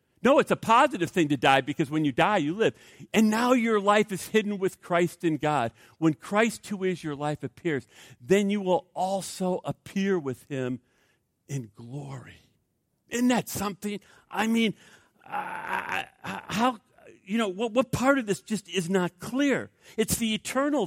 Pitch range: 170-255 Hz